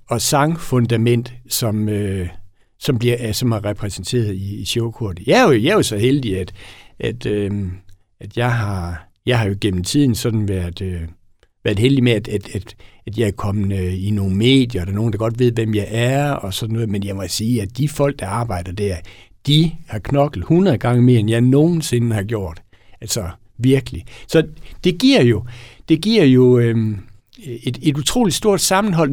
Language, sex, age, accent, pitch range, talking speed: Danish, male, 60-79, native, 110-150 Hz, 195 wpm